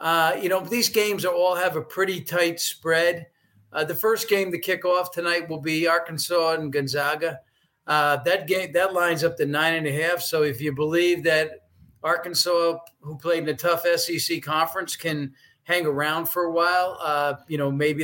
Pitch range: 140-170 Hz